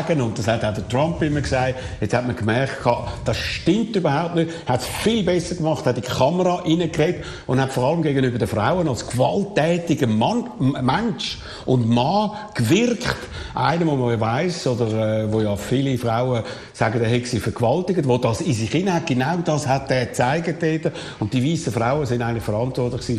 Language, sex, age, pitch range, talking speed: German, male, 60-79, 120-160 Hz, 185 wpm